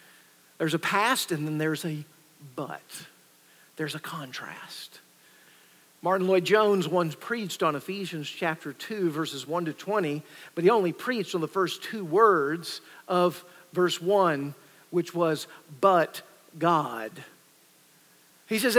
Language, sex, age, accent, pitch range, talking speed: English, male, 50-69, American, 160-205 Hz, 130 wpm